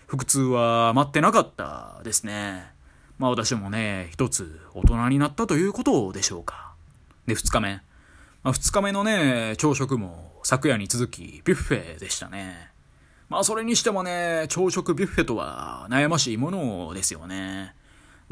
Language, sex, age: Japanese, male, 20-39